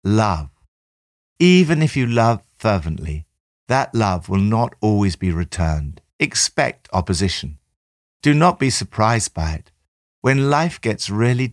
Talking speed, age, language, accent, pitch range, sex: 130 wpm, 60-79, English, British, 85-115 Hz, male